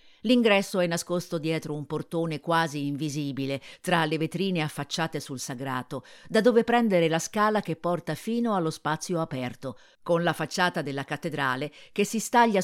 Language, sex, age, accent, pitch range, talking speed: Italian, female, 50-69, native, 145-190 Hz, 155 wpm